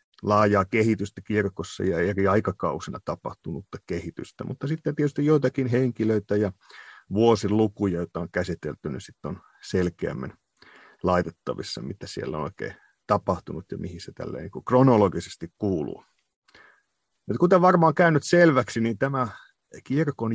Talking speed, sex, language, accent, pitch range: 120 wpm, male, Finnish, native, 95-130 Hz